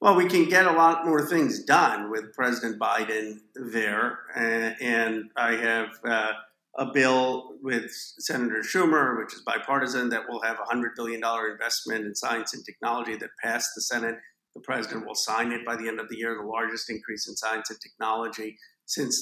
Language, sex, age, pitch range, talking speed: English, male, 50-69, 115-130 Hz, 185 wpm